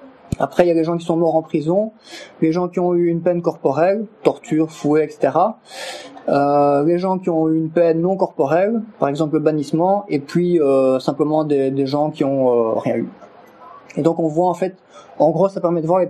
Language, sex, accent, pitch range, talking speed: French, male, French, 140-175 Hz, 225 wpm